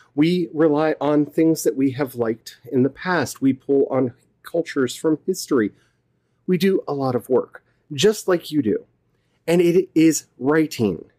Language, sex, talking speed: English, male, 165 wpm